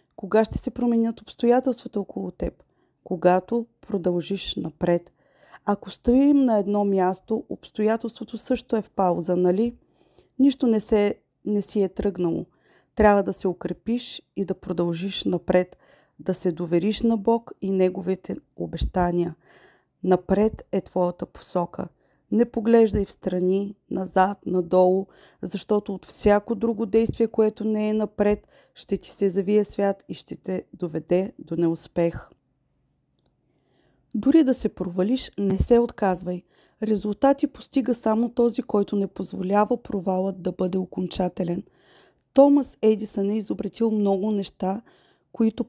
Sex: female